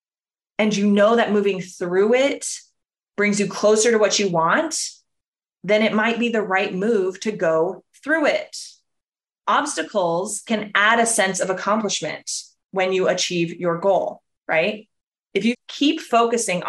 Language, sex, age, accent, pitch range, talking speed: English, female, 20-39, American, 180-235 Hz, 150 wpm